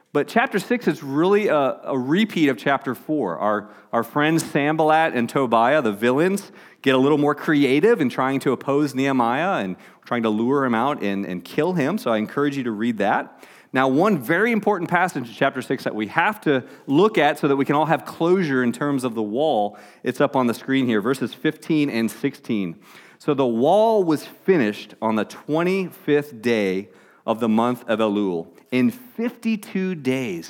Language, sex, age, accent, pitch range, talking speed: English, male, 30-49, American, 115-160 Hz, 195 wpm